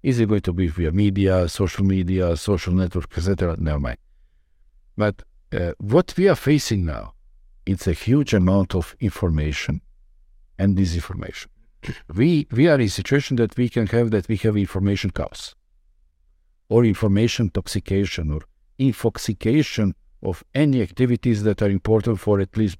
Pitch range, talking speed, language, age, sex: 85-105 Hz, 155 wpm, English, 50-69, male